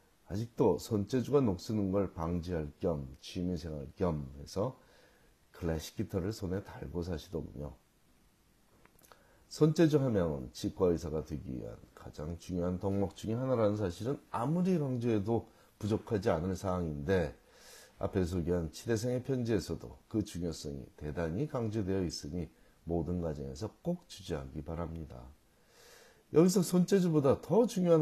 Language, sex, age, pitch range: Korean, male, 40-59, 80-115 Hz